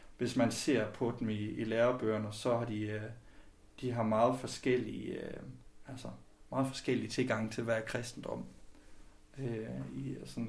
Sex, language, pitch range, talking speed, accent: male, Danish, 110-120 Hz, 130 wpm, native